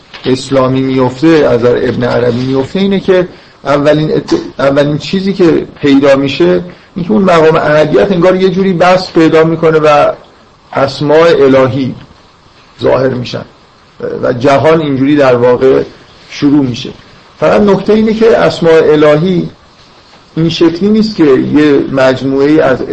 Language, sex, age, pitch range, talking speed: Persian, male, 50-69, 130-160 Hz, 130 wpm